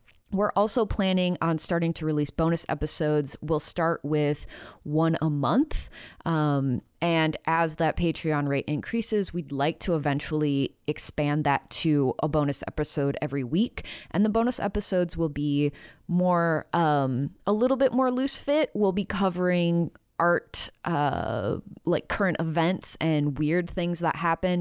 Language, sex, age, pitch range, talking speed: English, female, 20-39, 150-185 Hz, 150 wpm